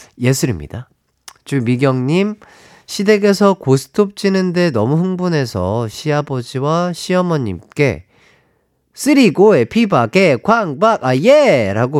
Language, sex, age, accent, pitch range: Korean, male, 30-49, native, 120-185 Hz